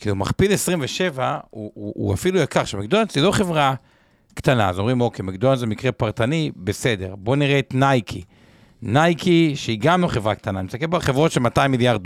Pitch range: 110-150 Hz